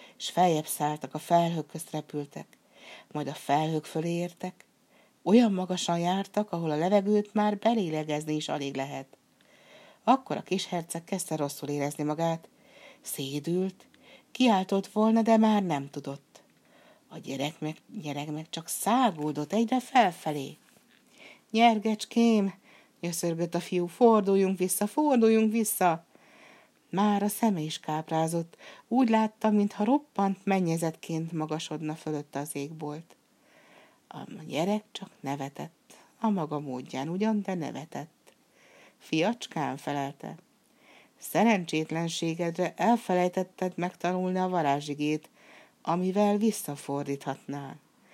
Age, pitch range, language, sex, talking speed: 60-79, 150-210 Hz, Hungarian, female, 110 wpm